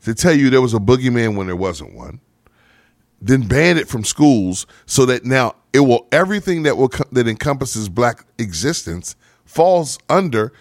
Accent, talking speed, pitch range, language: American, 170 wpm, 110-165 Hz, English